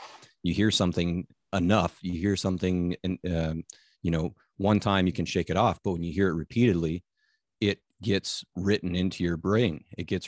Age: 30-49